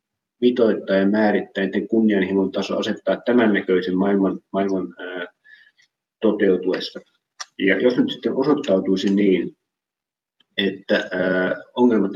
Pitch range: 95-110 Hz